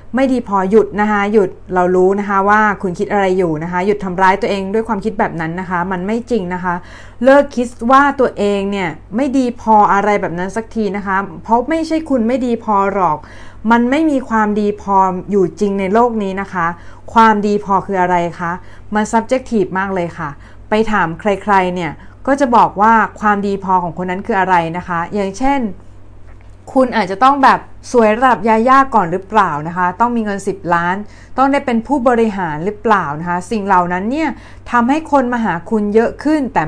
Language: Thai